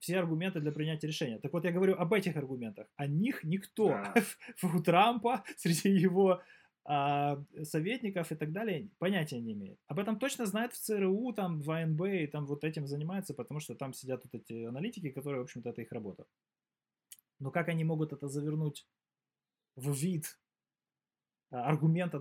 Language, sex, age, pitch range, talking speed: Ukrainian, male, 20-39, 145-180 Hz, 170 wpm